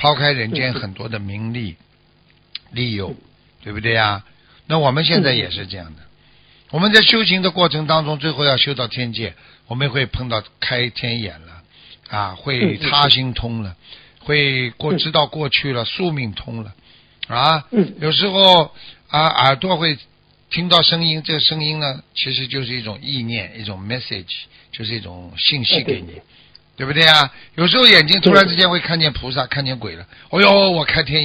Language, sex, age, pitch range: Chinese, male, 60-79, 115-170 Hz